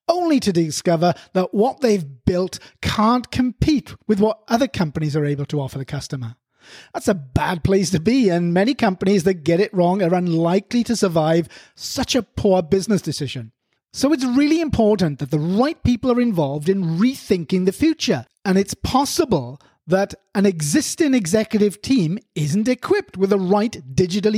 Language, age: English, 30-49